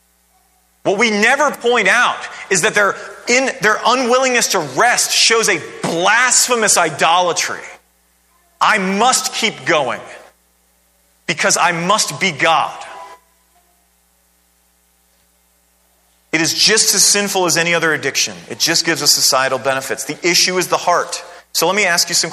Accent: American